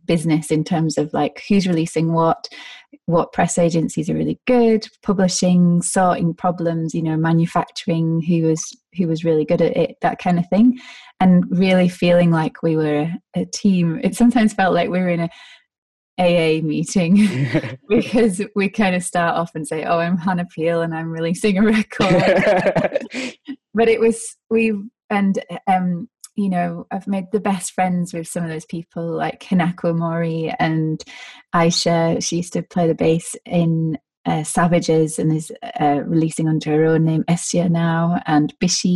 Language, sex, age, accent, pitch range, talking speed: English, female, 20-39, British, 160-205 Hz, 170 wpm